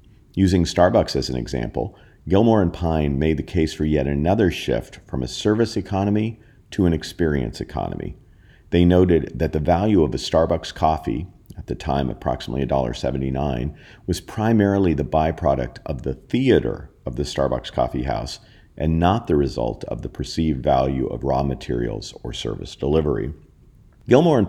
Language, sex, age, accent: English, male, 40-59, American